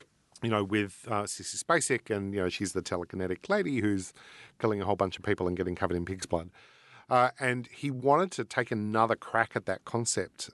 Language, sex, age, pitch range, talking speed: English, male, 40-59, 105-125 Hz, 210 wpm